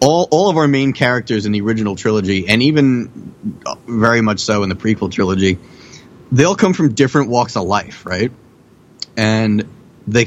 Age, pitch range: 30-49, 105-130 Hz